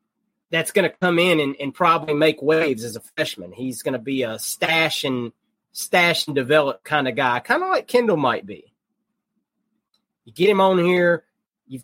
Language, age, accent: English, 30-49, American